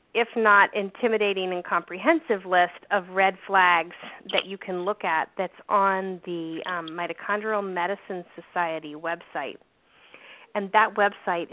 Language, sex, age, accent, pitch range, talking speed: English, female, 30-49, American, 170-200 Hz, 130 wpm